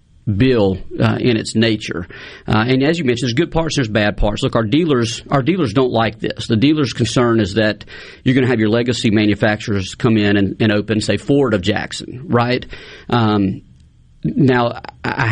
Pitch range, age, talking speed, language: 110-135 Hz, 40-59, 190 wpm, English